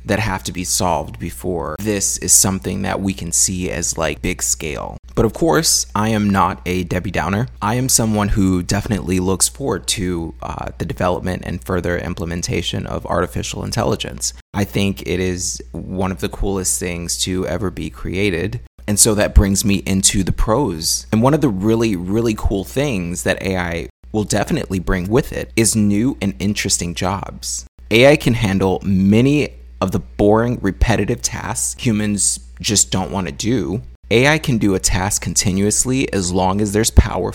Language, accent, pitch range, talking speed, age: English, American, 85-105 Hz, 175 wpm, 30-49